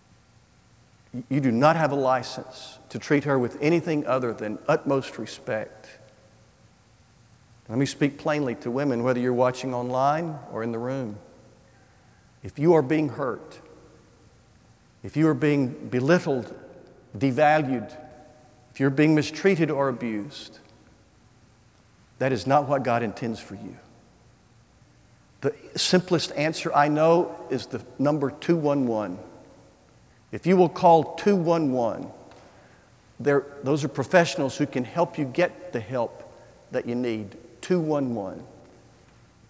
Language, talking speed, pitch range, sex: English, 125 wpm, 115-145 Hz, male